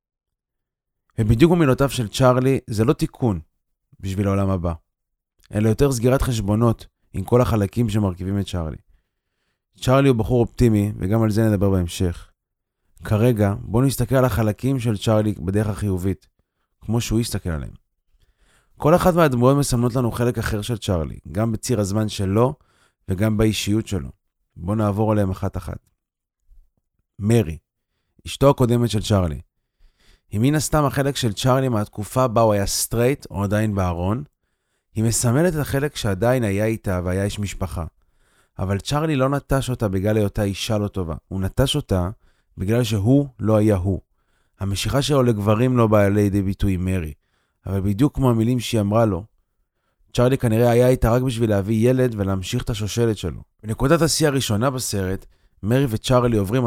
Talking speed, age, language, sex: 150 wpm, 30-49, Hebrew, male